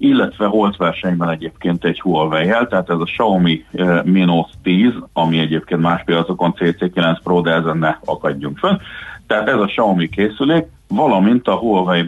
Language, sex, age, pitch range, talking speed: Hungarian, male, 40-59, 80-100 Hz, 160 wpm